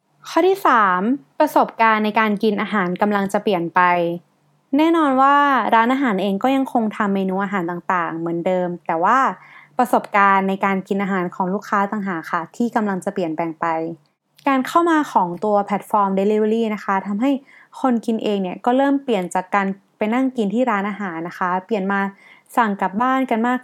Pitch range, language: 190-245 Hz, Thai